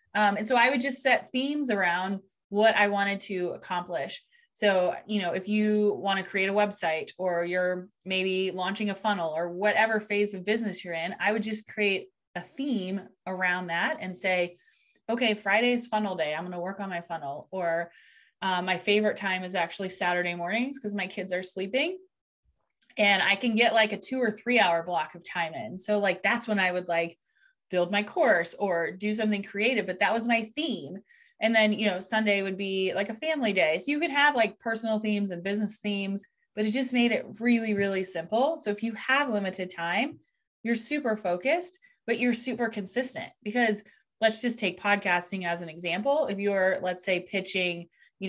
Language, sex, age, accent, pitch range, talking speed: English, female, 20-39, American, 185-225 Hz, 200 wpm